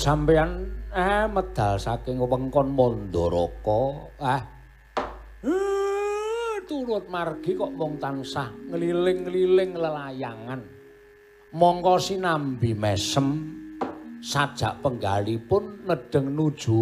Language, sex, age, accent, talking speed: Indonesian, male, 60-79, native, 90 wpm